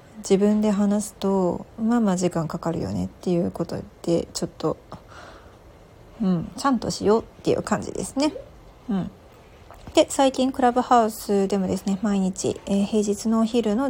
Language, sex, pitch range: Japanese, female, 190-240 Hz